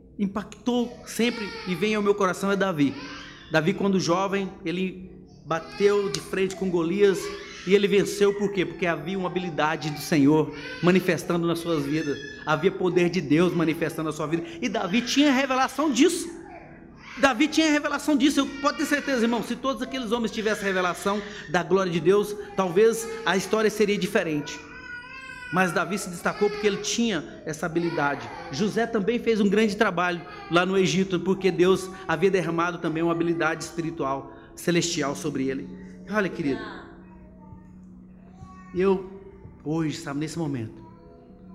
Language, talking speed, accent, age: Portuguese, 155 wpm, Brazilian, 30-49